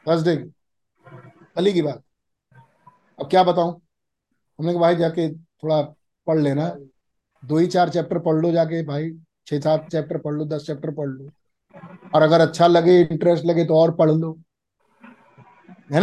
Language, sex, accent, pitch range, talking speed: Hindi, male, native, 160-210 Hz, 140 wpm